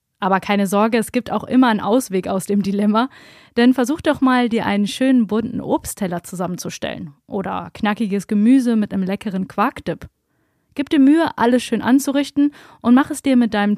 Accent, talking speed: German, 180 wpm